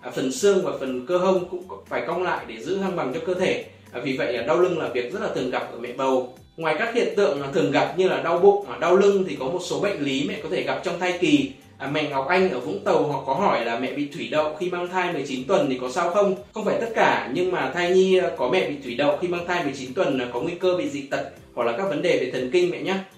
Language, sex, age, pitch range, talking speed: Vietnamese, male, 20-39, 140-190 Hz, 295 wpm